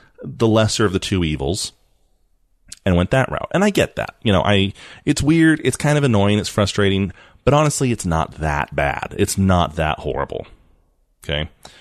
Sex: male